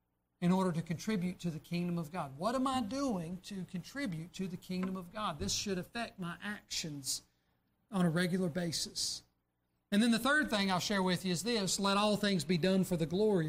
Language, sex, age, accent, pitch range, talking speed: English, male, 40-59, American, 165-210 Hz, 215 wpm